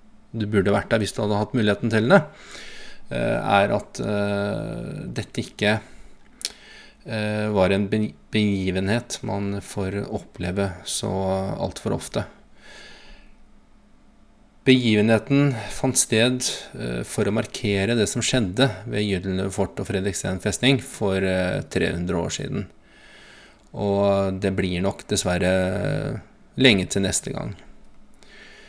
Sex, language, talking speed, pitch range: male, English, 115 wpm, 95-125 Hz